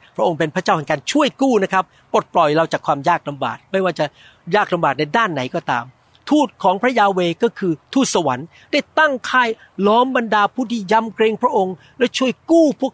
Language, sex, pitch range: Thai, male, 160-220 Hz